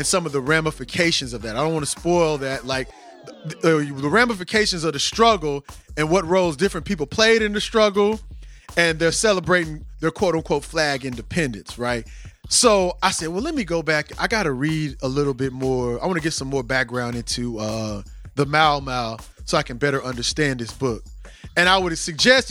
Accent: American